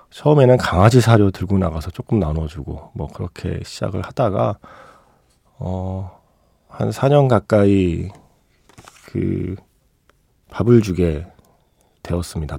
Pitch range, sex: 85-120 Hz, male